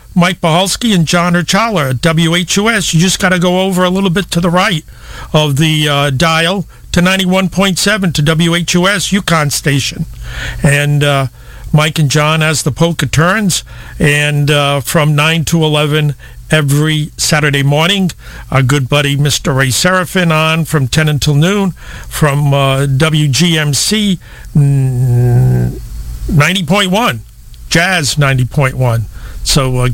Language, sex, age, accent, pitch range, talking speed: English, male, 50-69, American, 145-180 Hz, 130 wpm